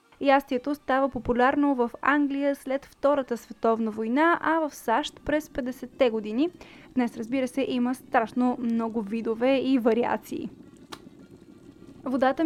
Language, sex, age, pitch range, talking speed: Bulgarian, female, 20-39, 230-290 Hz, 120 wpm